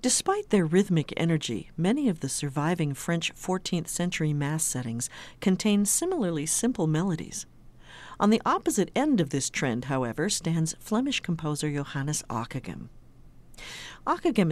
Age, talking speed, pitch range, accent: 50-69, 130 wpm, 145-205 Hz, American